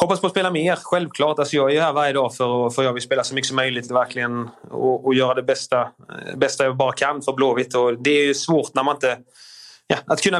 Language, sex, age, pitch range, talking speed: Swedish, male, 20-39, 130-155 Hz, 255 wpm